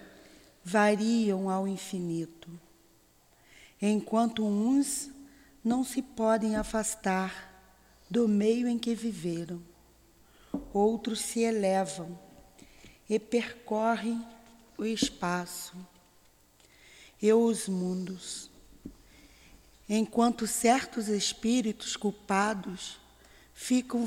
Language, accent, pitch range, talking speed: Portuguese, Brazilian, 185-230 Hz, 70 wpm